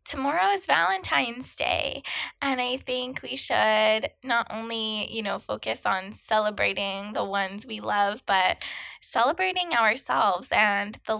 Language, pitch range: English, 205-280 Hz